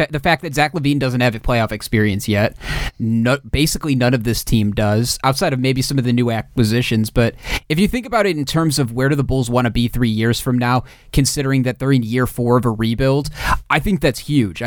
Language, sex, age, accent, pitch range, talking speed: English, male, 30-49, American, 120-145 Hz, 235 wpm